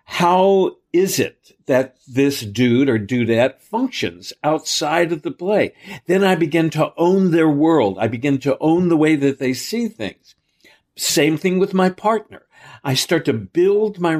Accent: American